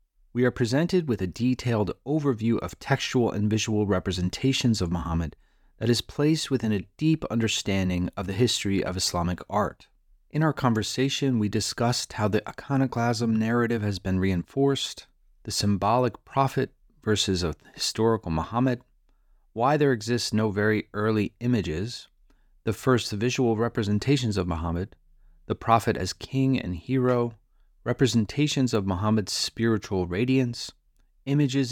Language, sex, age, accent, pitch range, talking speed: English, male, 30-49, American, 100-125 Hz, 135 wpm